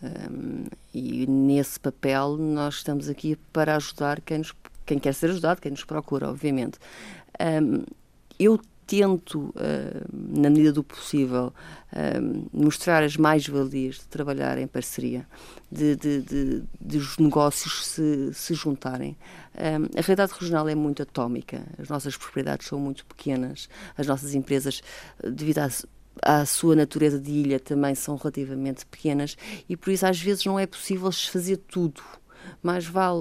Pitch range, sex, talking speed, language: 145-170 Hz, female, 135 wpm, Portuguese